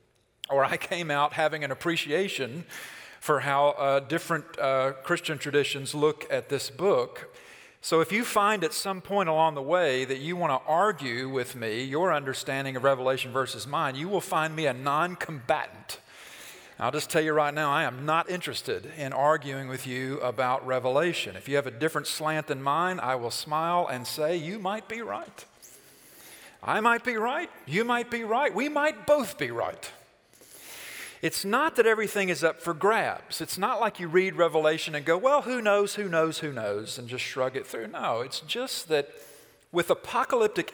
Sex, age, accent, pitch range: male, 40-59, American, 140-200 Hz